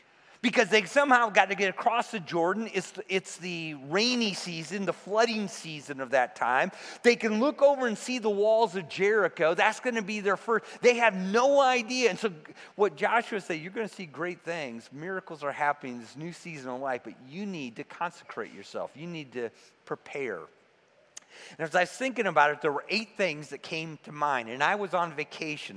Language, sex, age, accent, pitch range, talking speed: English, male, 40-59, American, 145-205 Hz, 205 wpm